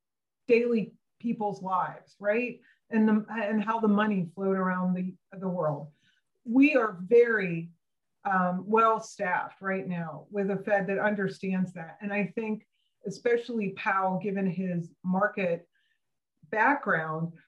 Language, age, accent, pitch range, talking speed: English, 30-49, American, 180-220 Hz, 130 wpm